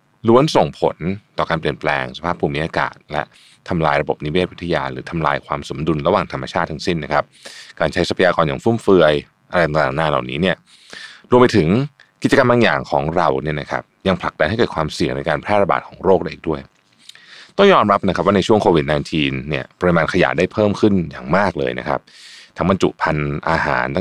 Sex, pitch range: male, 70-90 Hz